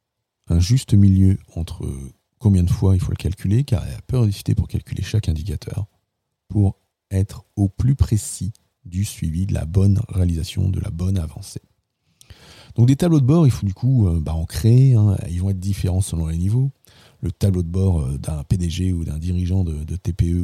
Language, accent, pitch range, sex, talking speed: French, French, 90-115 Hz, male, 195 wpm